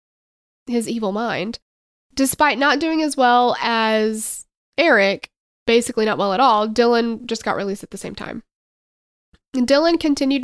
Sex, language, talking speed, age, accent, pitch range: female, English, 145 wpm, 20-39, American, 195-240 Hz